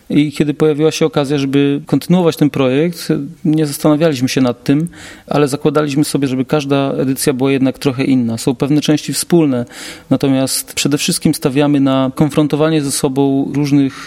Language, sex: Polish, male